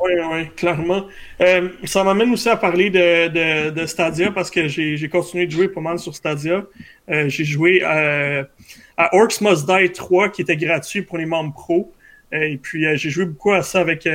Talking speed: 205 wpm